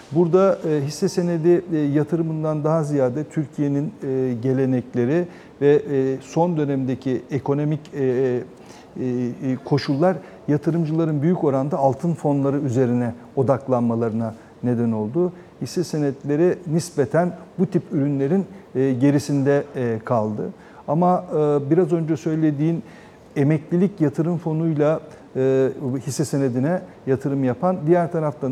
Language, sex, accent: Turkish, male, native